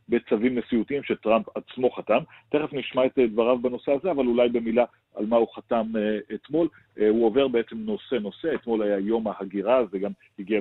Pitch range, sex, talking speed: 105-120 Hz, male, 170 wpm